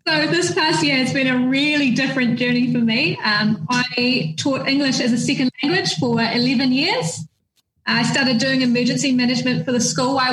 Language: English